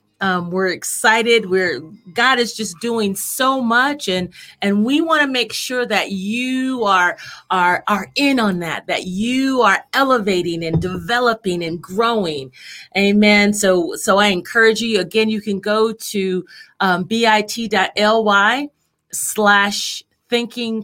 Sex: female